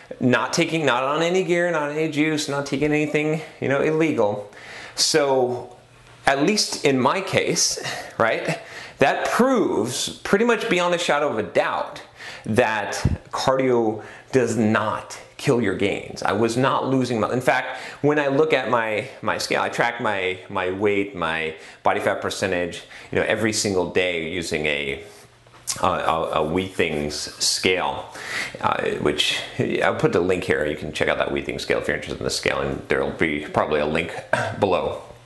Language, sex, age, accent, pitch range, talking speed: English, male, 30-49, American, 95-145 Hz, 175 wpm